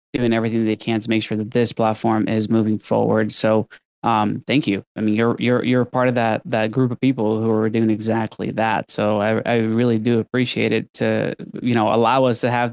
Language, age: English, 20-39